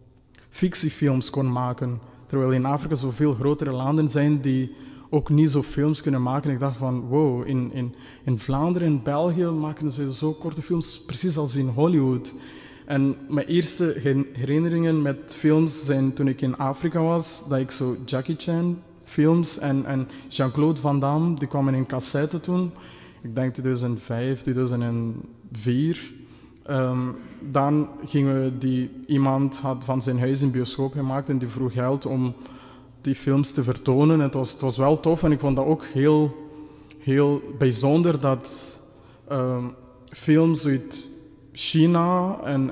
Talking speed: 155 wpm